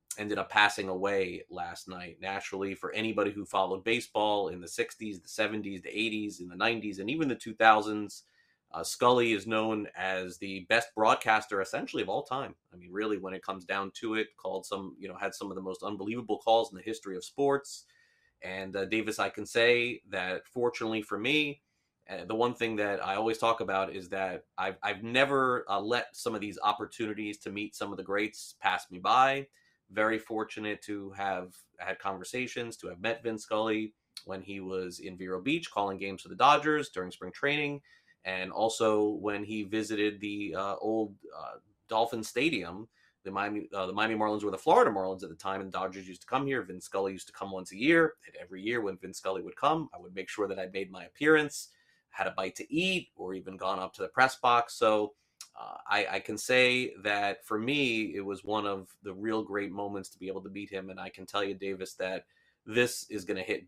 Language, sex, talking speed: English, male, 220 wpm